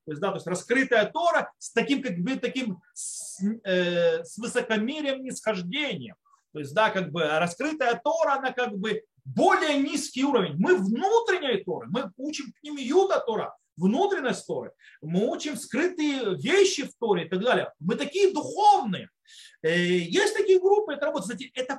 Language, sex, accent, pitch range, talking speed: Russian, male, native, 195-320 Hz, 160 wpm